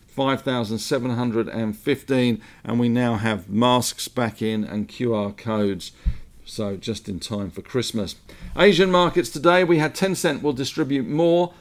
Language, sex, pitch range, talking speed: English, male, 115-145 Hz, 135 wpm